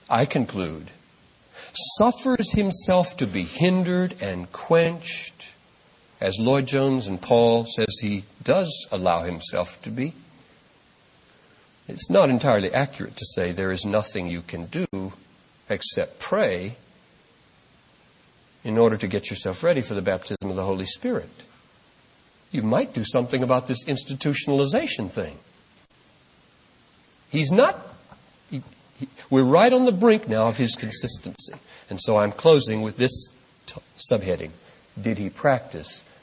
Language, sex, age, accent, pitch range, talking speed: English, male, 60-79, American, 95-135 Hz, 130 wpm